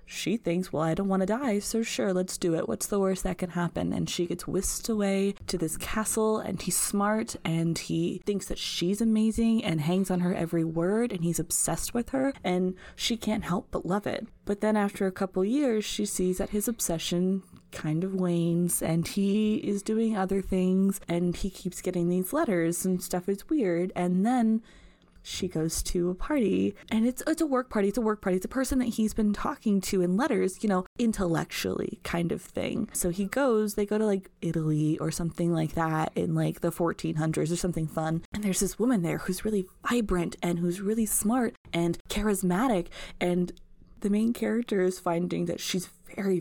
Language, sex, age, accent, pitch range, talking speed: English, female, 20-39, American, 175-215 Hz, 205 wpm